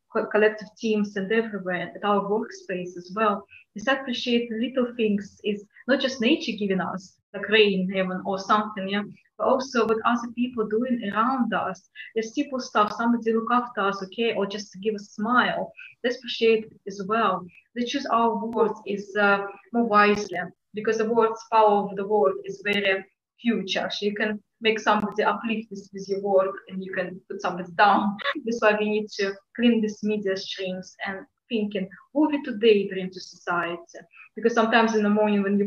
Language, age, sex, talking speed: English, 20-39, female, 185 wpm